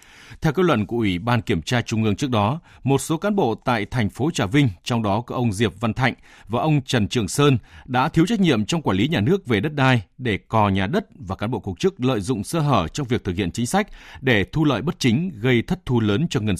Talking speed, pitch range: 270 wpm, 100-140 Hz